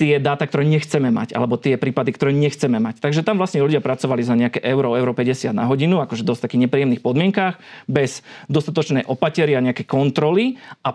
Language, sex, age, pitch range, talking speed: Slovak, male, 40-59, 125-155 Hz, 190 wpm